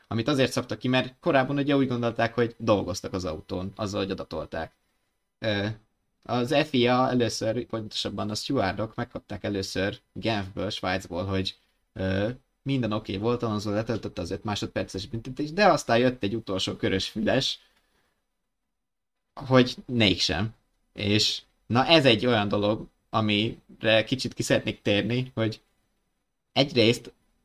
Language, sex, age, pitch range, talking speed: Hungarian, male, 20-39, 100-120 Hz, 130 wpm